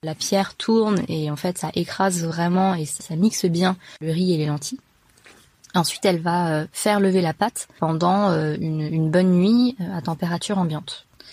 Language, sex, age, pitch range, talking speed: French, female, 20-39, 160-195 Hz, 180 wpm